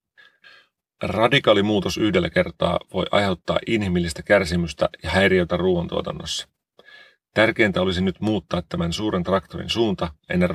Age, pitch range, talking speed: 30-49, 90-115 Hz, 110 wpm